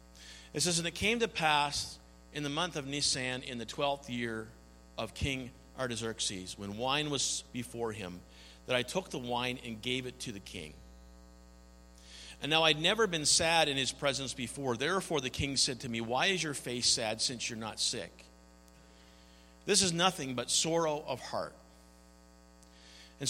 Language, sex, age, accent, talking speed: English, male, 50-69, American, 175 wpm